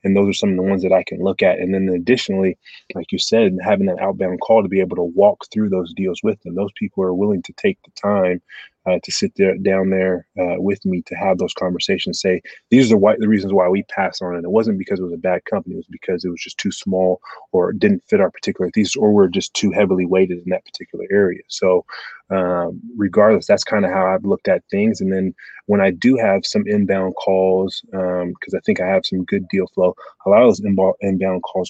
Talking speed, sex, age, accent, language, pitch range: 250 wpm, male, 20-39, American, English, 90-100 Hz